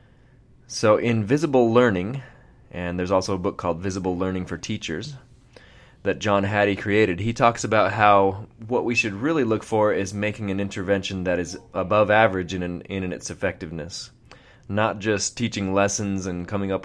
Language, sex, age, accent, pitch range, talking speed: English, male, 20-39, American, 95-115 Hz, 170 wpm